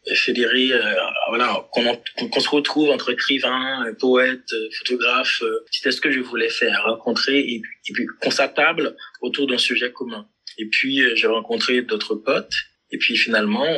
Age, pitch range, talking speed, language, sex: 20-39, 120-150 Hz, 155 wpm, French, male